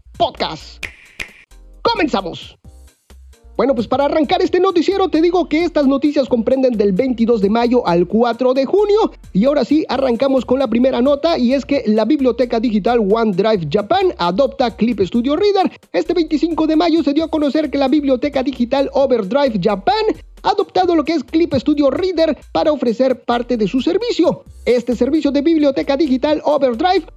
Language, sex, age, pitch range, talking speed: Spanish, male, 40-59, 240-320 Hz, 170 wpm